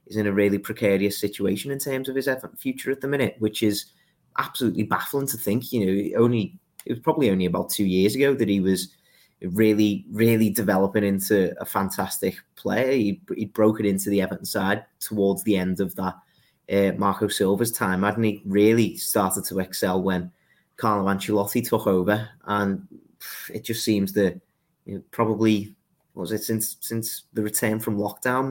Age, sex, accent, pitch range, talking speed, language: 30-49, male, British, 100-125 Hz, 185 wpm, English